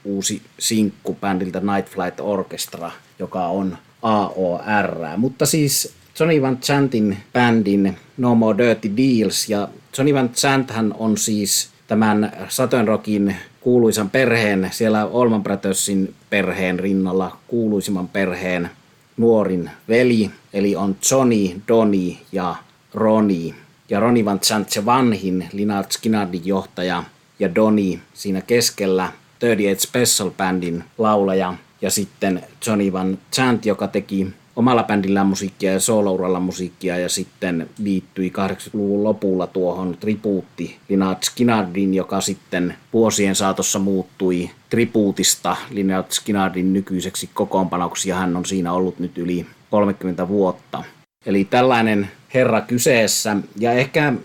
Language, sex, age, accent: Finnish, male, 30-49, native